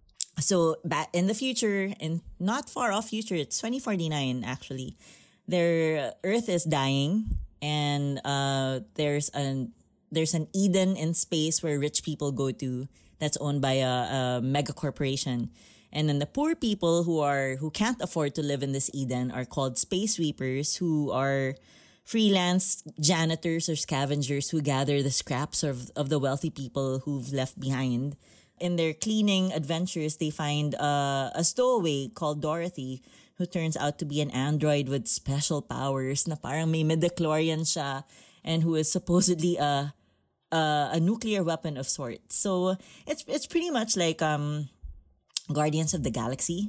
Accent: Filipino